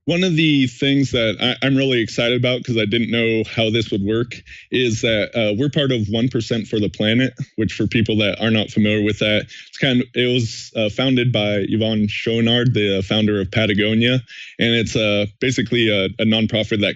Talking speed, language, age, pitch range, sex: 215 wpm, English, 20-39, 105-125 Hz, male